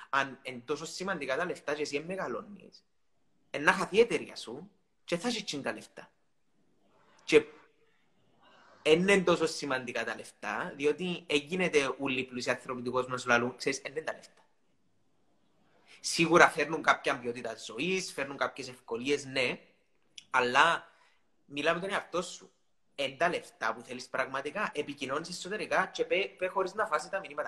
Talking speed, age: 115 wpm, 30-49